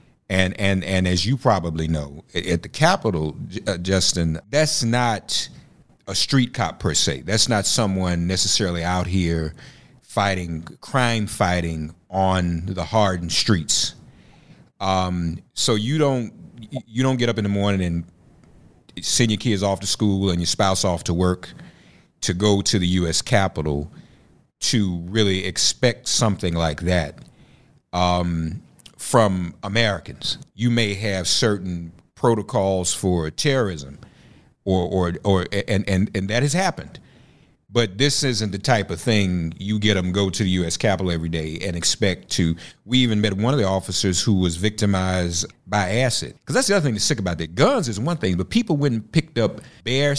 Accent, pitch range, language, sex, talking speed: American, 90-120 Hz, English, male, 165 wpm